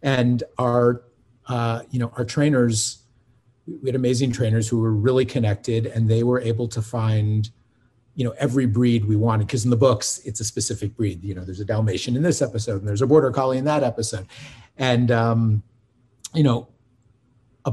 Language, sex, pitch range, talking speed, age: English, male, 115-130 Hz, 185 wpm, 40-59